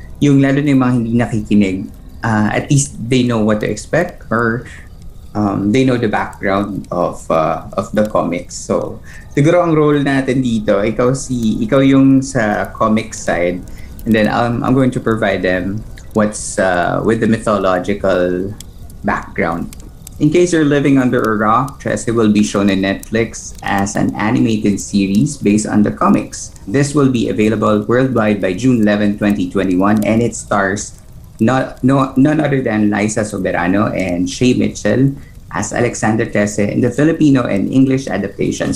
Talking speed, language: 160 wpm, Filipino